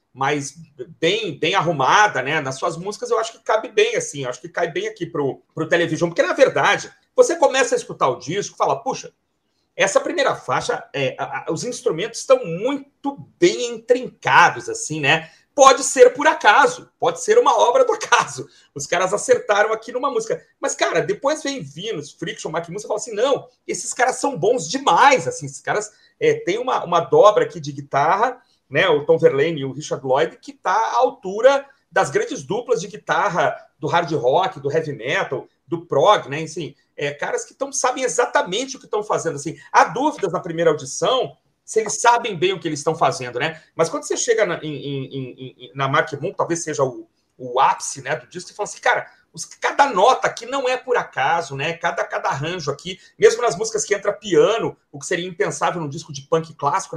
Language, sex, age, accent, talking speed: Portuguese, male, 40-59, Brazilian, 205 wpm